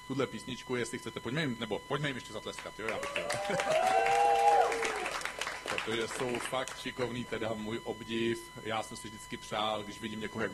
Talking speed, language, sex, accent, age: 165 wpm, Czech, male, native, 40-59